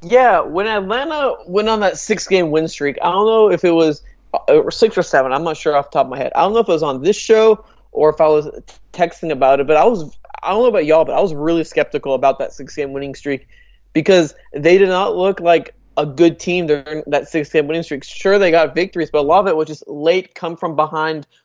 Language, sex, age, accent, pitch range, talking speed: English, male, 20-39, American, 155-195 Hz, 245 wpm